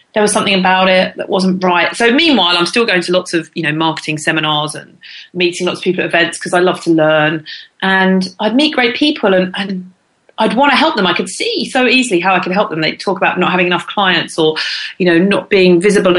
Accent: British